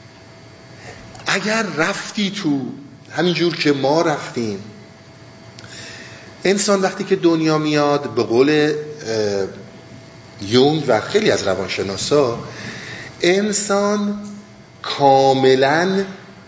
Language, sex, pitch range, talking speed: Persian, male, 130-185 Hz, 75 wpm